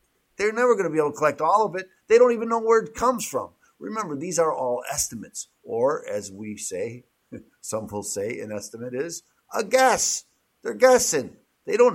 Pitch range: 125-170 Hz